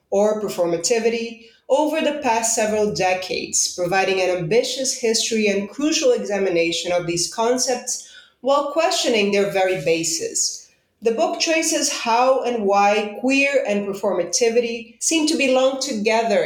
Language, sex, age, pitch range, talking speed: English, female, 30-49, 195-250 Hz, 130 wpm